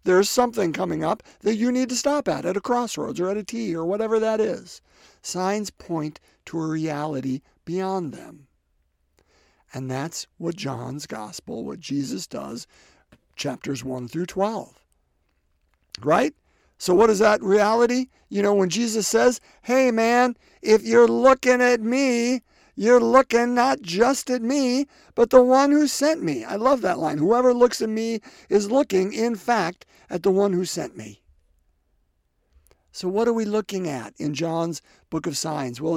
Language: English